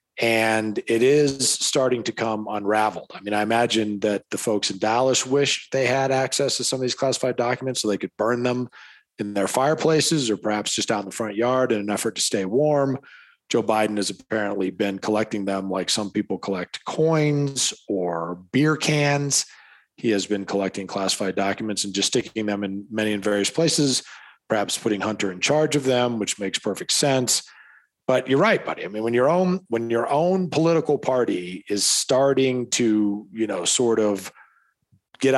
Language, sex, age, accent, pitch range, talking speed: English, male, 40-59, American, 105-140 Hz, 190 wpm